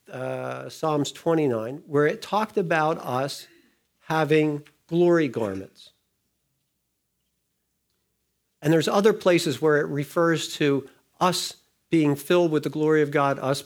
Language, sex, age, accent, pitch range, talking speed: English, male, 50-69, American, 135-190 Hz, 125 wpm